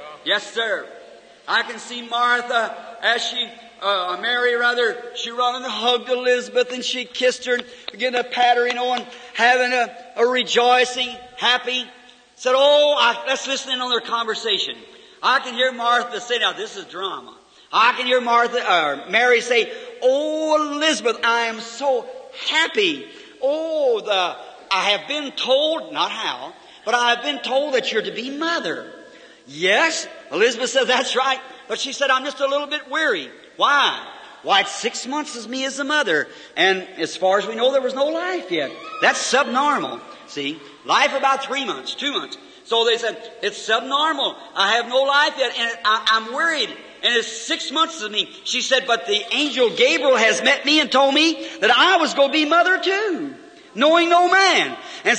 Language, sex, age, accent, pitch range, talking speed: English, male, 50-69, American, 240-310 Hz, 185 wpm